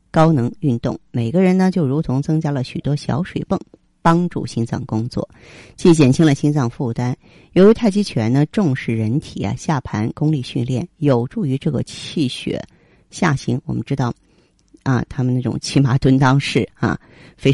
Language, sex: Chinese, female